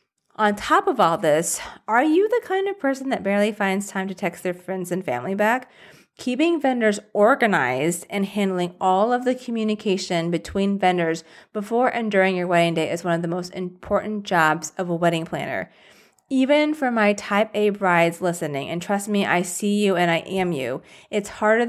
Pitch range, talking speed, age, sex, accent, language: 175-215 Hz, 190 wpm, 30-49, female, American, English